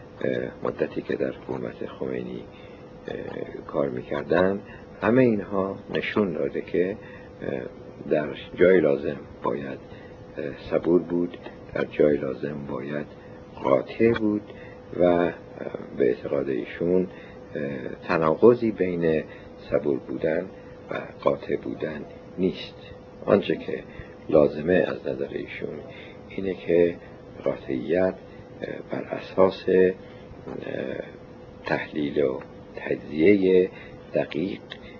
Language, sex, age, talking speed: Persian, male, 60-79, 85 wpm